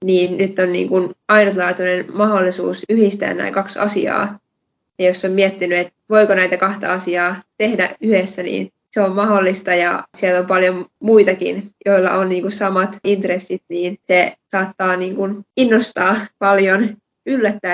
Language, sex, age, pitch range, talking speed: Finnish, female, 20-39, 180-200 Hz, 140 wpm